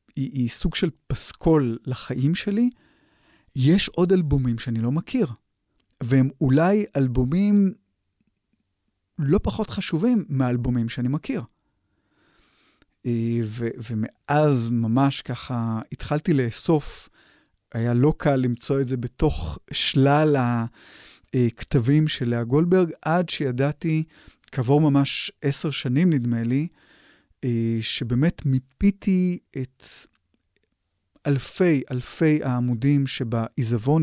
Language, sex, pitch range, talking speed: Hebrew, male, 120-160 Hz, 95 wpm